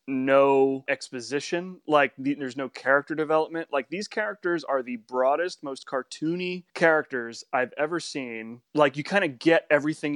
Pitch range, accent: 125-155 Hz, American